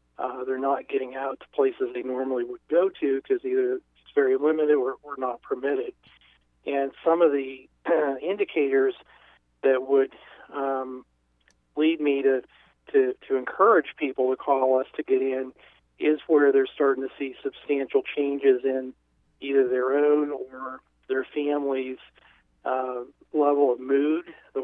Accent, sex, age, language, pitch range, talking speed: American, male, 40-59, English, 130-150 Hz, 150 wpm